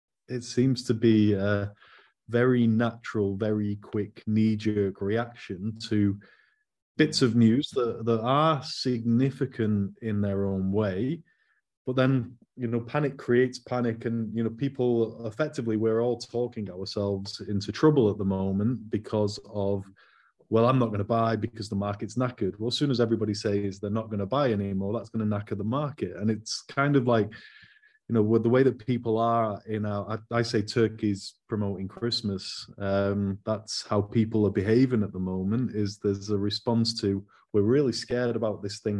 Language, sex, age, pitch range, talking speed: English, male, 30-49, 100-120 Hz, 175 wpm